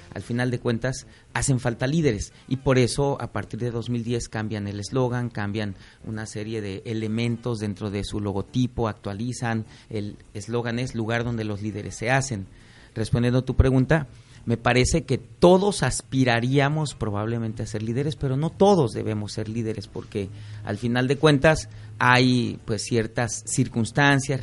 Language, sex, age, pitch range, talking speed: Spanish, male, 40-59, 110-135 Hz, 155 wpm